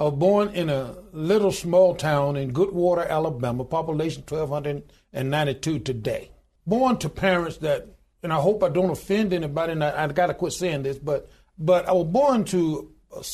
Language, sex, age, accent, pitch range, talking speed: English, male, 60-79, American, 150-185 Hz, 175 wpm